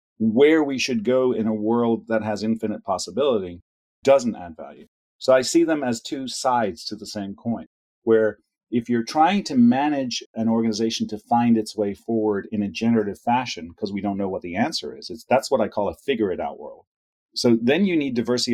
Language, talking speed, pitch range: English, 200 wpm, 105-125 Hz